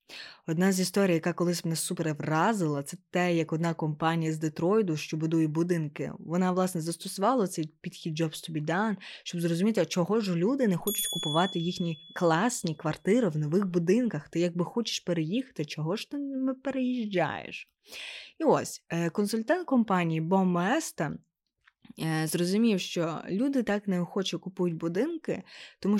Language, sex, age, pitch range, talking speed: Ukrainian, female, 20-39, 165-205 Hz, 145 wpm